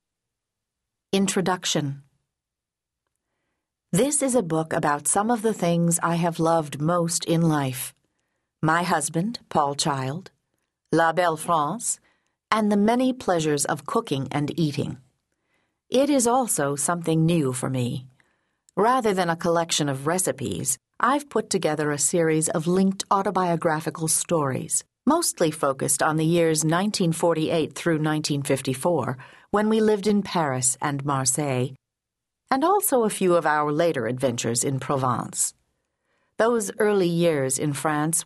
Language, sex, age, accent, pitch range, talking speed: English, female, 50-69, American, 145-200 Hz, 130 wpm